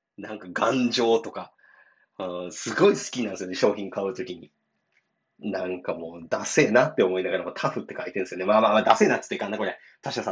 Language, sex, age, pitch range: Japanese, male, 20-39, 95-160 Hz